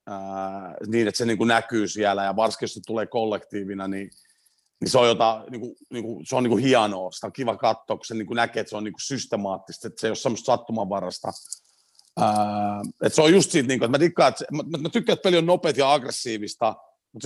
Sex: male